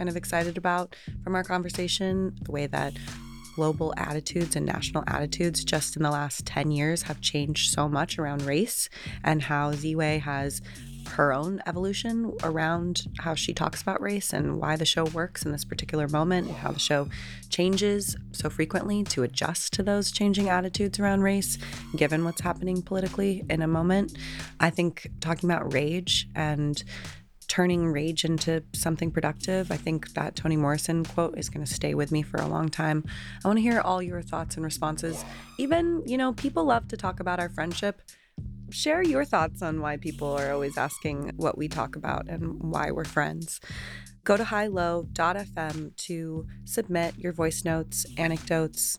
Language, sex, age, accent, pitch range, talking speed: English, female, 20-39, American, 150-180 Hz, 170 wpm